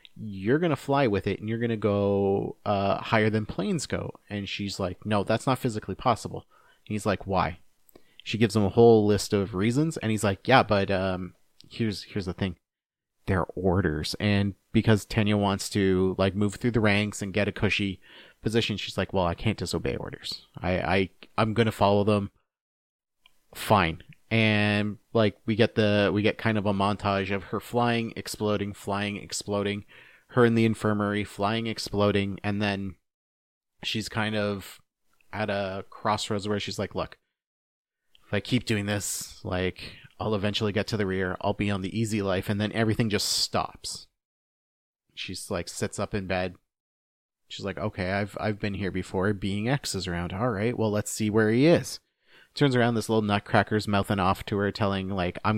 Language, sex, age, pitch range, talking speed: English, male, 30-49, 95-110 Hz, 180 wpm